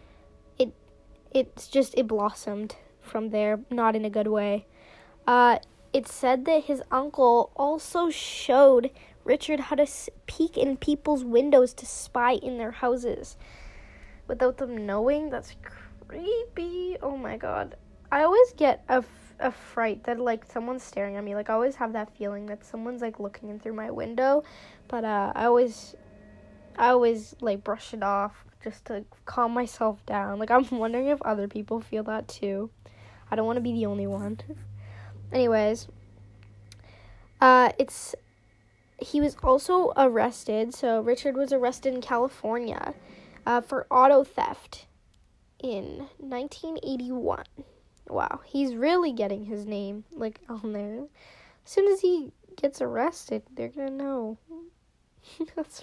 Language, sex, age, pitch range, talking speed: English, female, 10-29, 210-270 Hz, 145 wpm